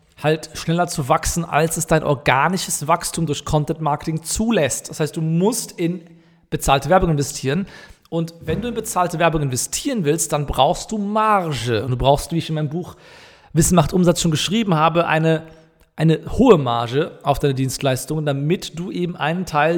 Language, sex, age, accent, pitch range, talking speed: German, male, 40-59, German, 130-160 Hz, 175 wpm